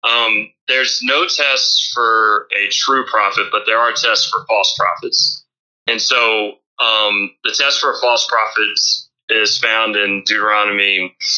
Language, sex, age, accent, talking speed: English, male, 30-49, American, 150 wpm